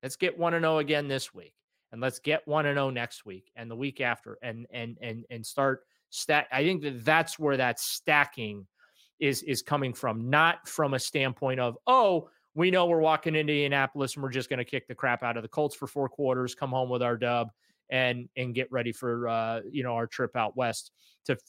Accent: American